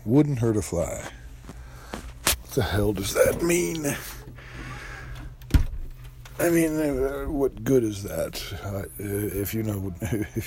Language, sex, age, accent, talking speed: English, male, 60-79, American, 115 wpm